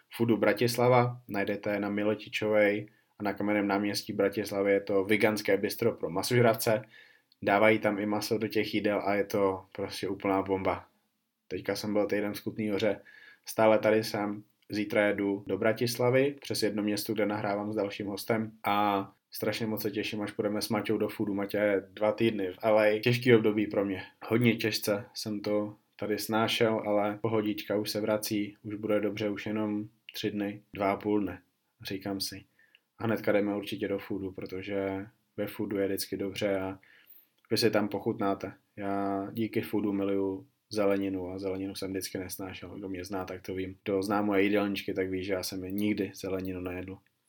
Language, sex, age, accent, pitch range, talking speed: Czech, male, 20-39, native, 100-110 Hz, 175 wpm